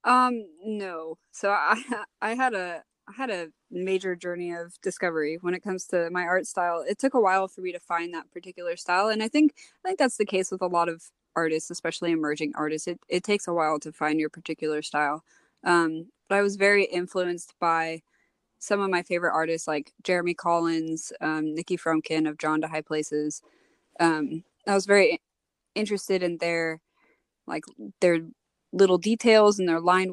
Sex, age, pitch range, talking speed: female, 20-39, 165-200 Hz, 190 wpm